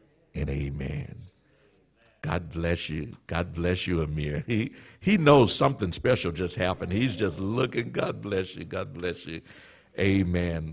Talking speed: 145 wpm